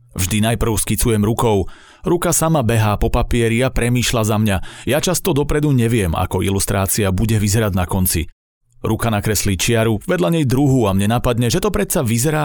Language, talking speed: Slovak, 175 wpm